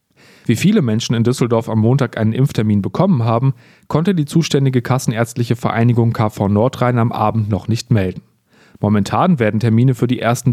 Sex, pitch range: male, 110-145 Hz